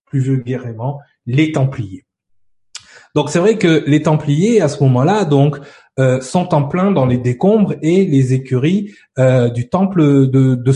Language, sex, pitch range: French, male, 130-180 Hz